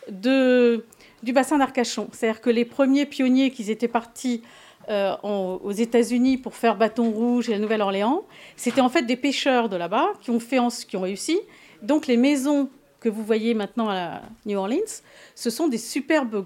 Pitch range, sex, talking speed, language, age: 210-270 Hz, female, 185 wpm, French, 40-59